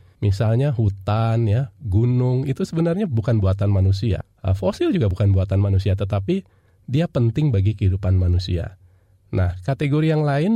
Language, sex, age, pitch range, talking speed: Indonesian, male, 20-39, 95-130 Hz, 135 wpm